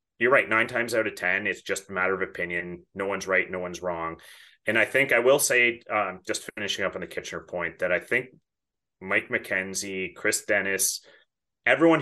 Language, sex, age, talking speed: English, male, 30-49, 205 wpm